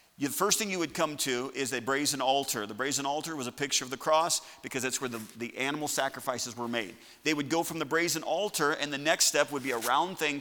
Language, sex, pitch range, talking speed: English, male, 130-165 Hz, 260 wpm